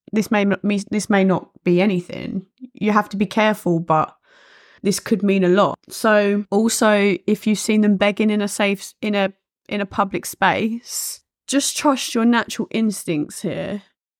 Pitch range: 185-220 Hz